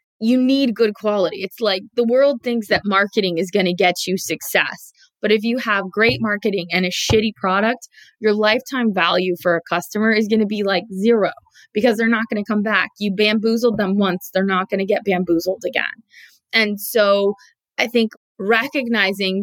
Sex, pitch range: female, 180-225 Hz